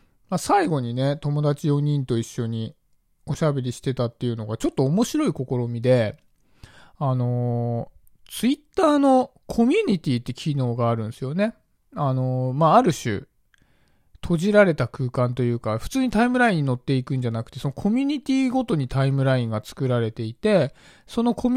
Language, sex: Japanese, male